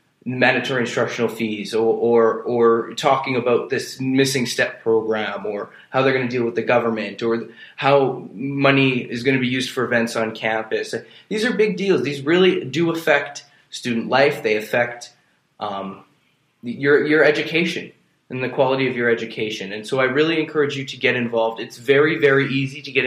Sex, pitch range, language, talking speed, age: male, 115-145 Hz, English, 180 wpm, 20-39